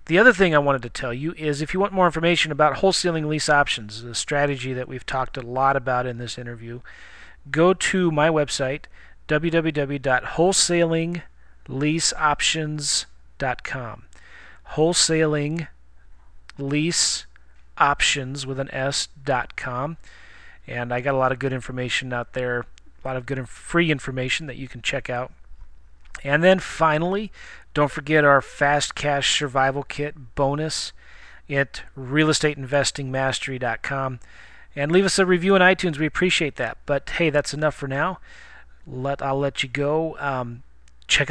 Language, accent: English, American